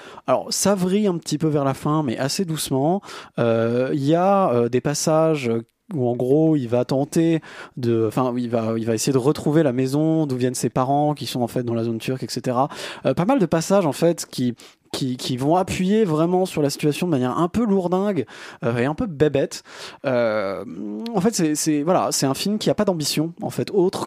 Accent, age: French, 20-39